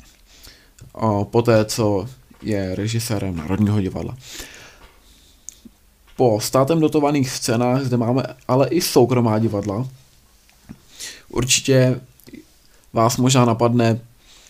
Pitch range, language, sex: 110-125 Hz, Czech, male